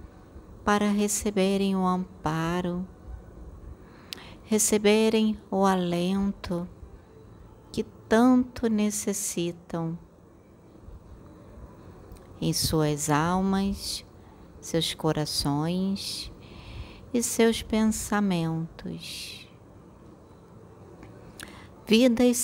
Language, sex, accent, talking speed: Portuguese, female, Brazilian, 50 wpm